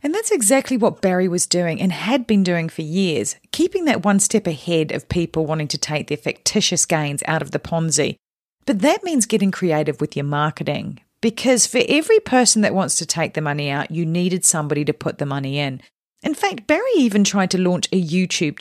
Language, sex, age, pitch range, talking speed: English, female, 40-59, 155-215 Hz, 215 wpm